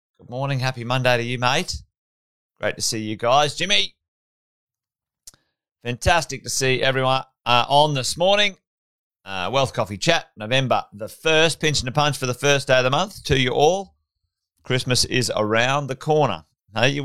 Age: 30-49